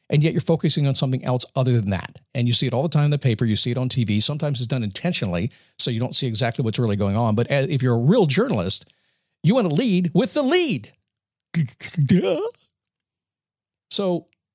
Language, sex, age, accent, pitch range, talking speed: English, male, 50-69, American, 125-170 Hz, 215 wpm